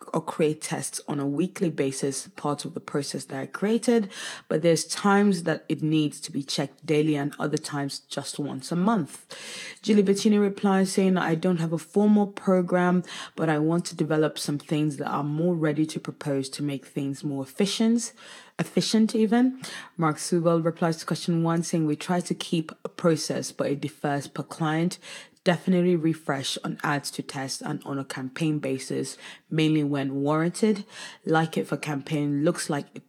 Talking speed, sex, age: 180 wpm, female, 20-39